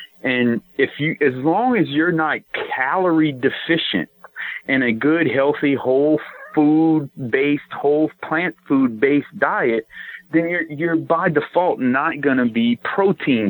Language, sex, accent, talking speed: English, male, American, 140 wpm